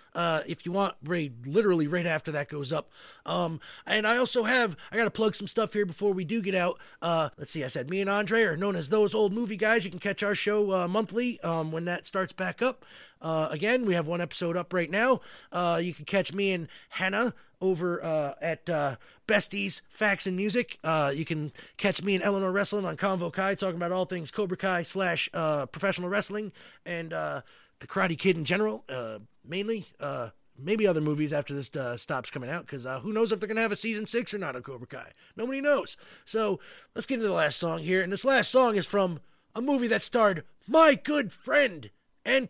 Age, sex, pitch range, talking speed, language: 30-49, male, 165-215 Hz, 225 wpm, English